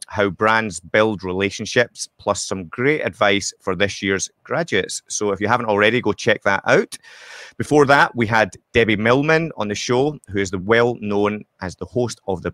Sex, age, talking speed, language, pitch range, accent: male, 30-49, 185 wpm, English, 105-130 Hz, British